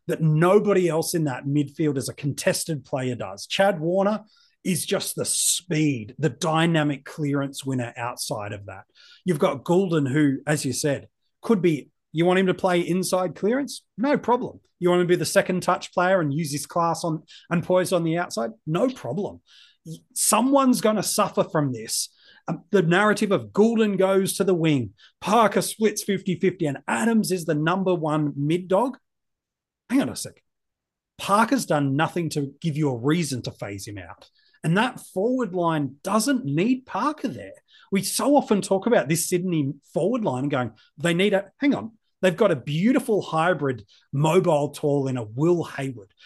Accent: Australian